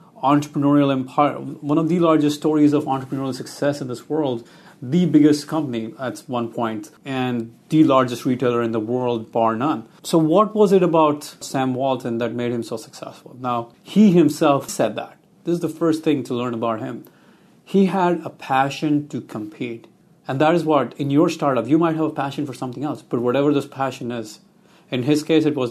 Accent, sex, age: Indian, male, 30-49